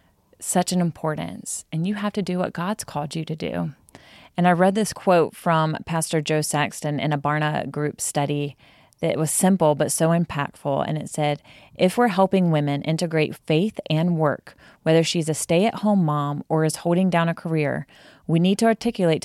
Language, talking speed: English, 195 wpm